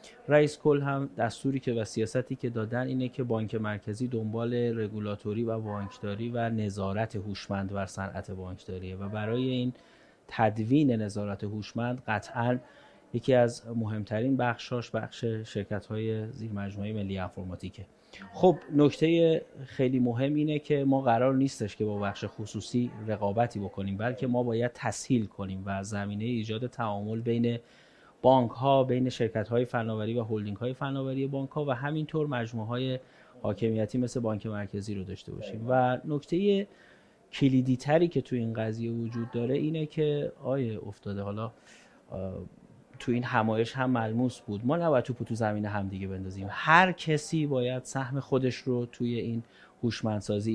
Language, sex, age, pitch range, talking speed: Persian, male, 30-49, 105-130 Hz, 145 wpm